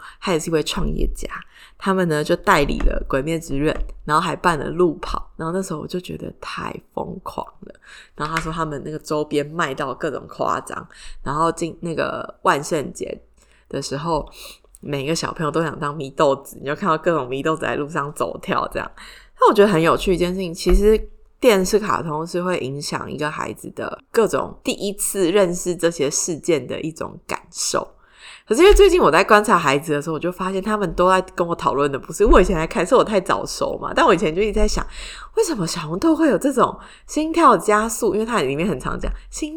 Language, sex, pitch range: Chinese, female, 160-225 Hz